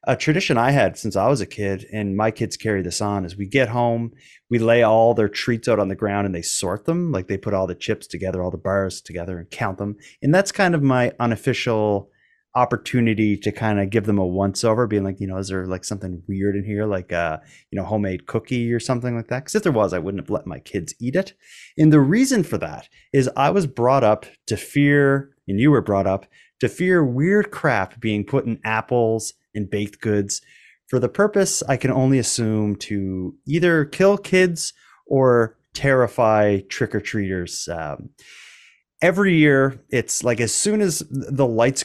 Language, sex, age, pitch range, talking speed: English, male, 30-49, 100-140 Hz, 210 wpm